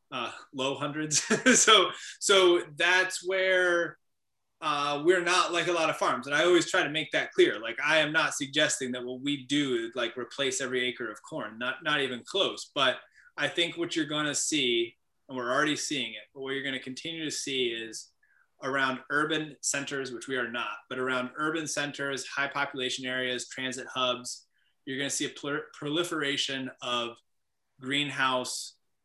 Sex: male